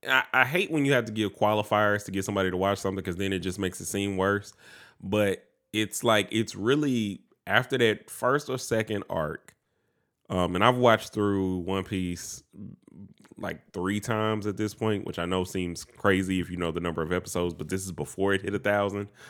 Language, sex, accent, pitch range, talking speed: English, male, American, 90-115 Hz, 205 wpm